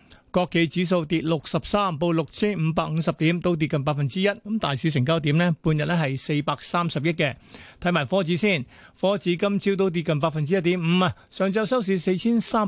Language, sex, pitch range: Chinese, male, 150-185 Hz